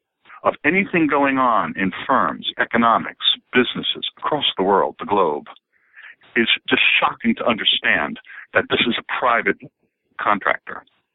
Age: 60-79